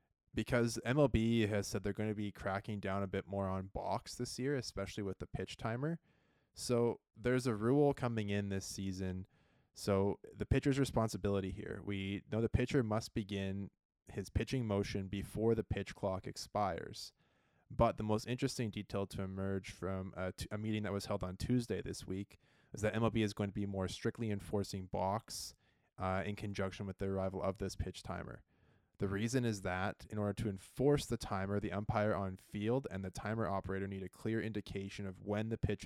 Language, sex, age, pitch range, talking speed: English, male, 20-39, 95-115 Hz, 190 wpm